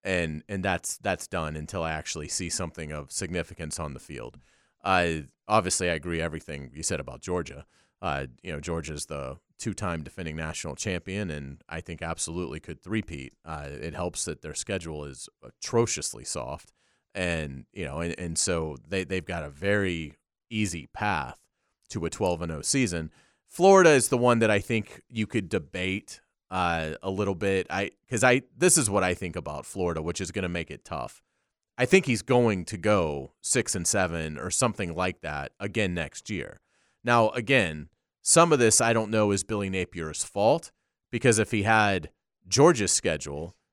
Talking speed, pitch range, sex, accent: 180 wpm, 80-105 Hz, male, American